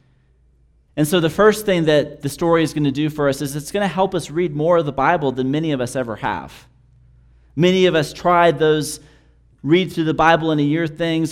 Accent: American